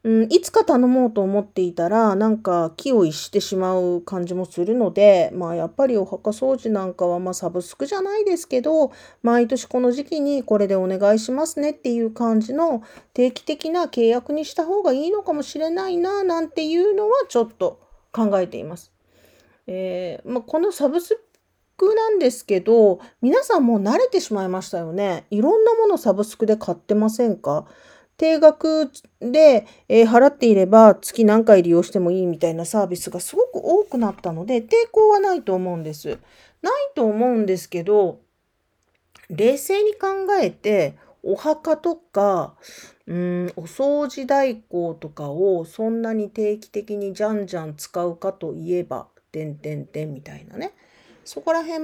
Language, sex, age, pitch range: Japanese, female, 40-59, 185-310 Hz